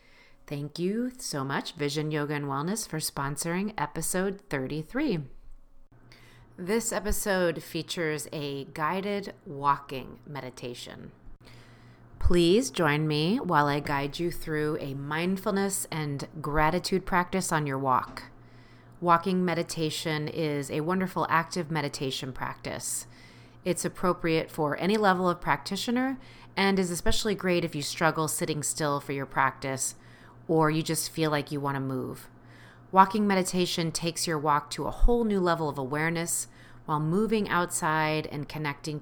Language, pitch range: English, 140-175 Hz